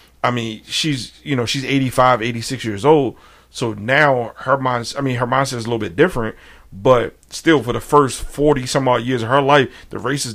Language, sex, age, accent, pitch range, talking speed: English, male, 40-59, American, 105-130 Hz, 215 wpm